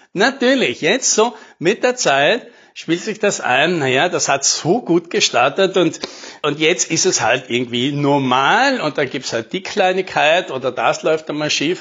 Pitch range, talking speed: 145-190 Hz, 180 wpm